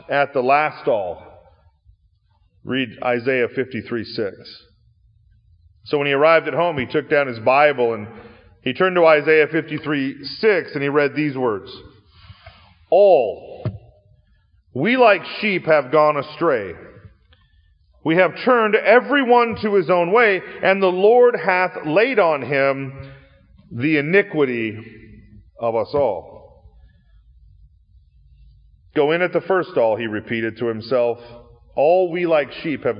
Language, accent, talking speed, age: English, American, 130 wpm, 40-59